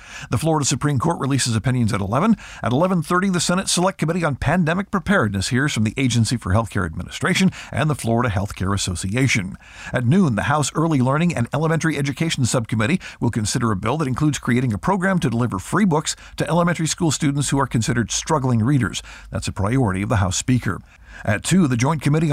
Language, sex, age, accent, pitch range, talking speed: English, male, 50-69, American, 110-155 Hz, 195 wpm